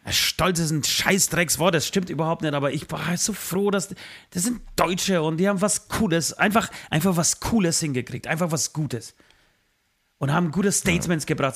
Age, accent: 30-49, German